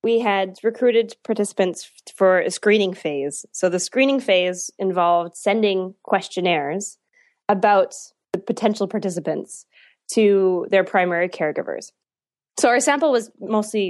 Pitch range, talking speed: 175-210 Hz, 120 wpm